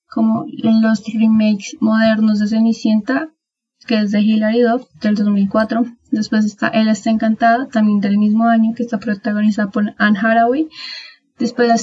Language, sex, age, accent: Spanish, female, 10-29, Colombian